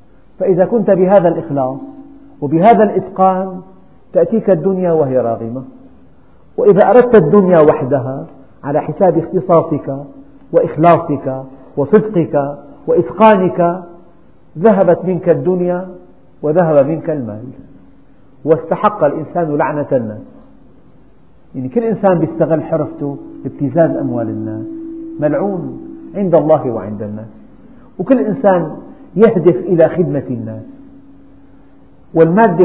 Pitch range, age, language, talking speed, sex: 140-190 Hz, 50-69, Arabic, 90 wpm, male